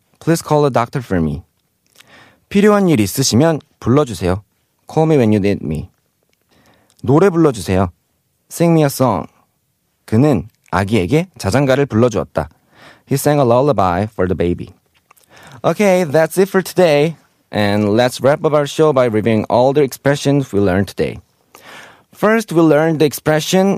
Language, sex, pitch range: Korean, male, 100-155 Hz